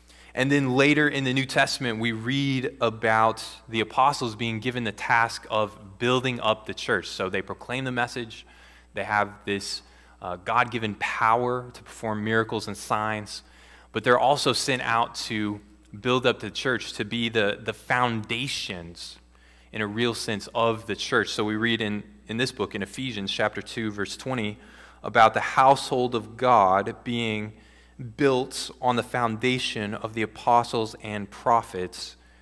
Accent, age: American, 20-39